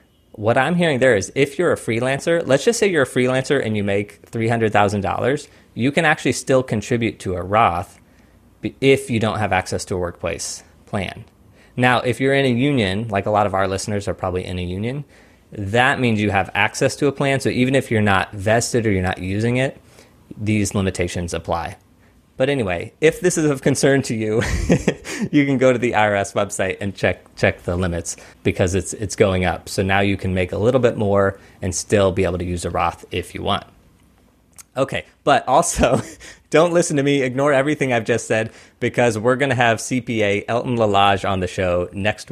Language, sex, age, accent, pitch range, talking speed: English, male, 20-39, American, 95-130 Hz, 210 wpm